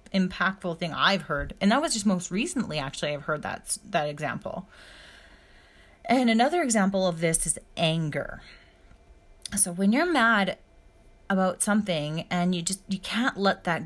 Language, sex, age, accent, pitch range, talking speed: English, female, 30-49, American, 170-225 Hz, 155 wpm